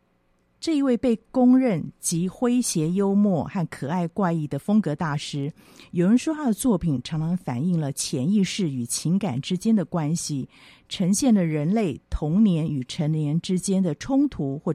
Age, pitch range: 50-69, 145-205 Hz